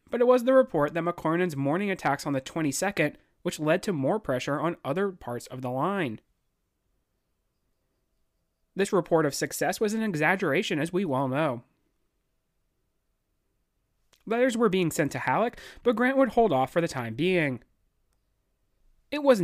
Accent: American